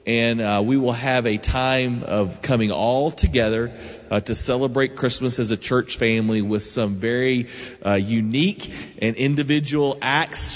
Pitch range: 105-135 Hz